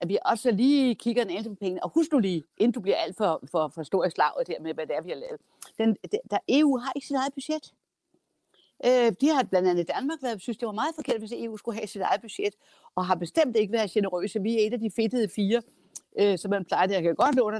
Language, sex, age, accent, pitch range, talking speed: Danish, female, 60-79, native, 170-235 Hz, 275 wpm